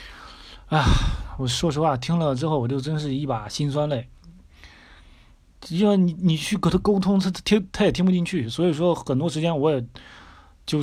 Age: 30-49